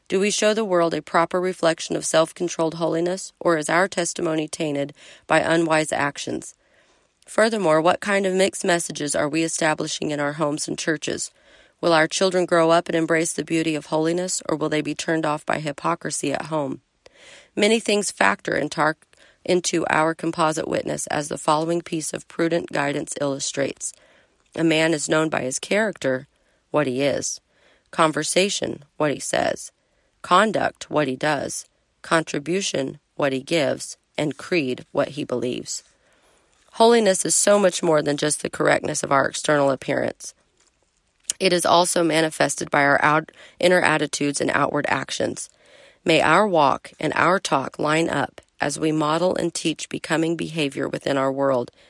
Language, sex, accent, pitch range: English, female, American, 150-175 Hz